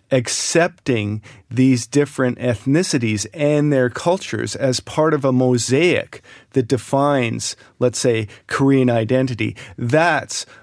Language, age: Korean, 40-59